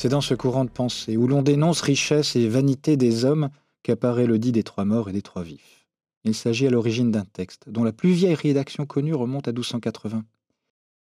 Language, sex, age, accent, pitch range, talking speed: French, male, 40-59, French, 110-145 Hz, 210 wpm